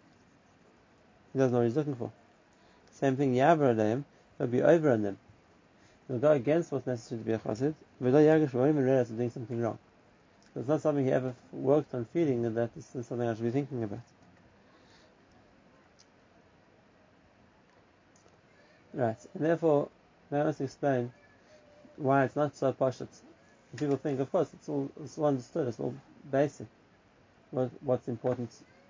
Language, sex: English, male